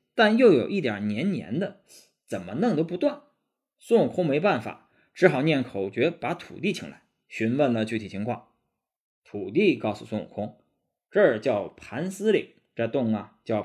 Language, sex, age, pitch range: Chinese, male, 20-39, 115-195 Hz